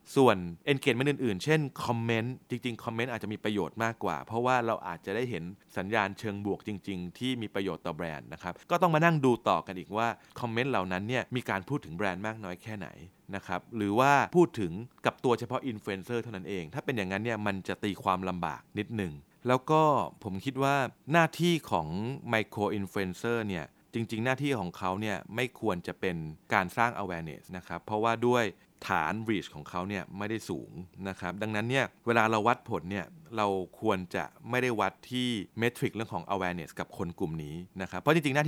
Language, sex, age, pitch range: Thai, male, 30-49, 95-125 Hz